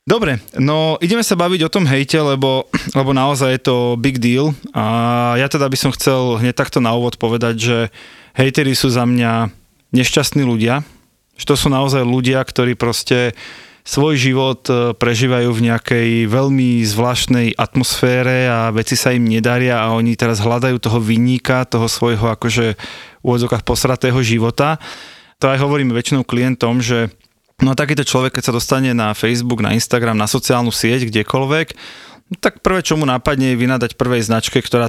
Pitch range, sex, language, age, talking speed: 115-135 Hz, male, Slovak, 20-39, 165 wpm